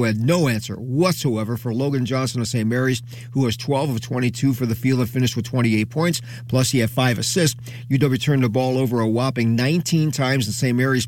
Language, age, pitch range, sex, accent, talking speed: English, 40-59, 120-135 Hz, male, American, 215 wpm